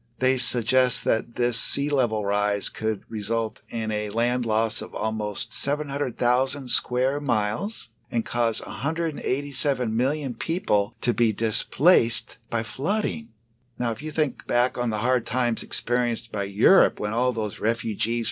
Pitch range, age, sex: 110-145 Hz, 60-79, male